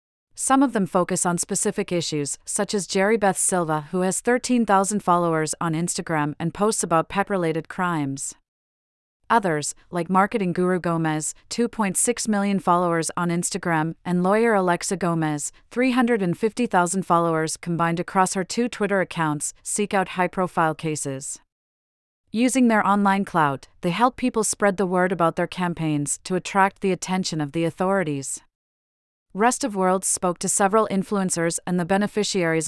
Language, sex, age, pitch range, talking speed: English, female, 40-59, 165-195 Hz, 145 wpm